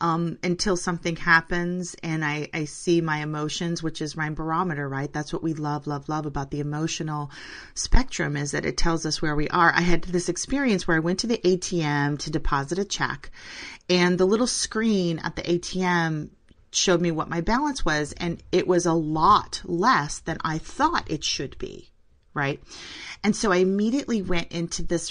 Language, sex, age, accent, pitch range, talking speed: English, female, 30-49, American, 150-185 Hz, 190 wpm